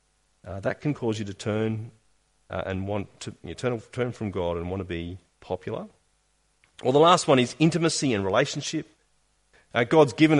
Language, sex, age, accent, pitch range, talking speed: English, male, 40-59, Australian, 100-130 Hz, 190 wpm